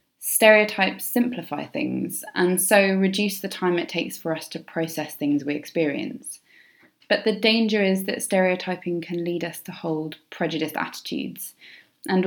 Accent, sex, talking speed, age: British, female, 150 wpm, 20-39